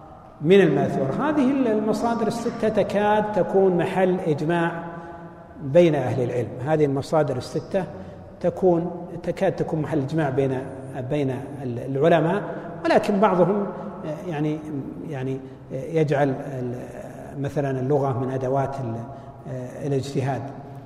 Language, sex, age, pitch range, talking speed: Arabic, male, 60-79, 135-170 Hz, 95 wpm